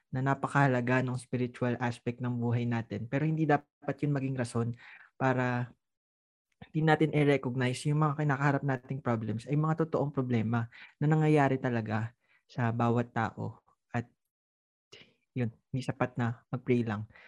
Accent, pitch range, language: native, 120-140 Hz, Filipino